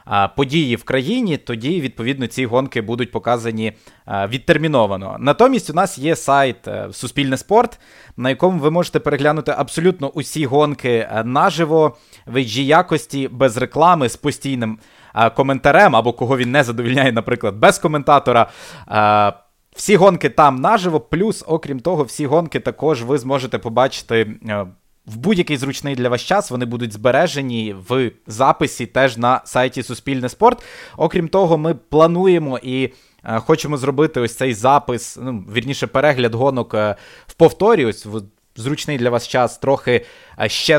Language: Ukrainian